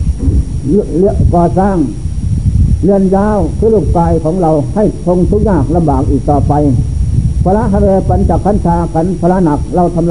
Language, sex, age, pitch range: Thai, male, 60-79, 145-200 Hz